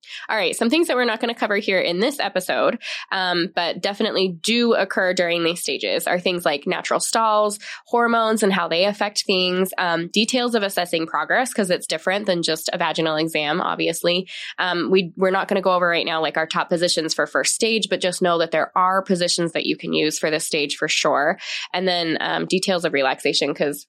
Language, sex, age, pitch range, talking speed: English, female, 20-39, 160-200 Hz, 215 wpm